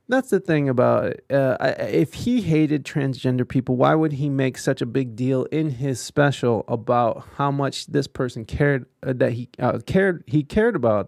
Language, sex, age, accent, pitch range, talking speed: English, male, 20-39, American, 125-160 Hz, 190 wpm